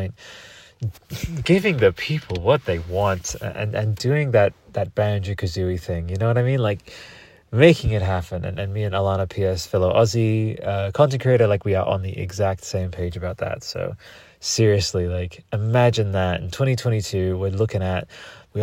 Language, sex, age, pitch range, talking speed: English, male, 30-49, 95-120 Hz, 185 wpm